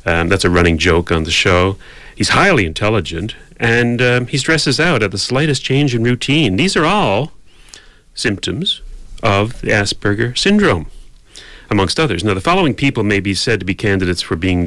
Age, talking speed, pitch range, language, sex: 40-59, 175 wpm, 90-115 Hz, English, male